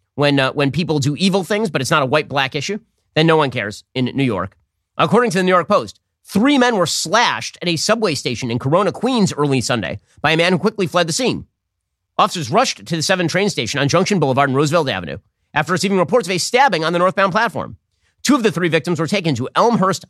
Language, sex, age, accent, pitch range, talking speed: English, male, 40-59, American, 110-175 Hz, 235 wpm